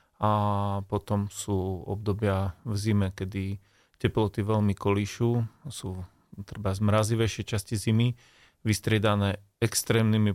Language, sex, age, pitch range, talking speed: Slovak, male, 30-49, 100-110 Hz, 100 wpm